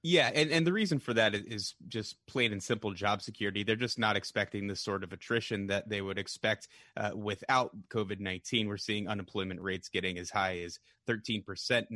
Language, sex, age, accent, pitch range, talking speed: English, male, 30-49, American, 100-120 Hz, 190 wpm